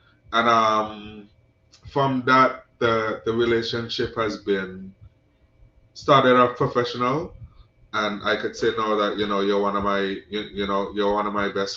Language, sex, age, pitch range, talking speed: English, male, 20-39, 100-120 Hz, 165 wpm